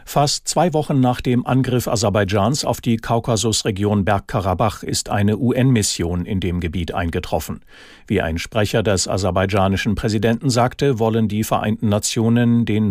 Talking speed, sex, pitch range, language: 140 wpm, male, 95-120 Hz, German